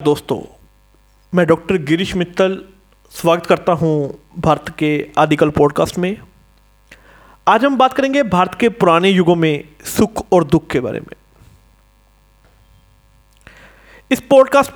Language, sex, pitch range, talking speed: Hindi, male, 150-195 Hz, 120 wpm